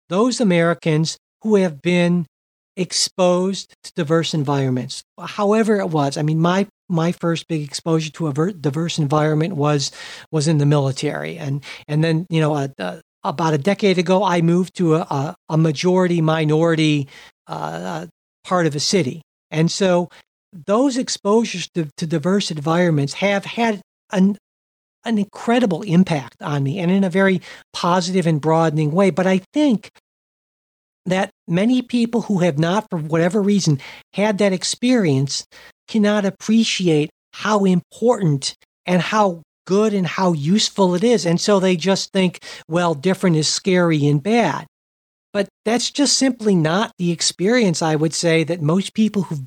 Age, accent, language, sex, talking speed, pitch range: 60-79, American, English, male, 155 wpm, 155-195 Hz